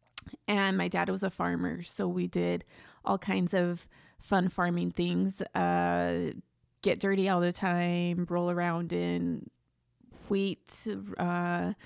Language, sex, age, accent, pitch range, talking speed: English, female, 20-39, American, 170-195 Hz, 130 wpm